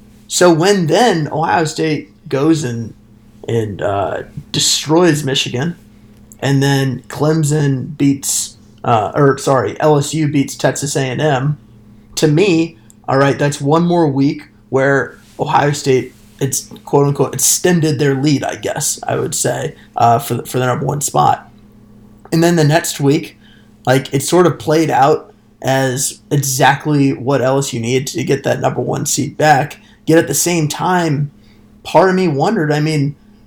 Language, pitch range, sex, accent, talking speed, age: English, 130-150 Hz, male, American, 150 wpm, 20-39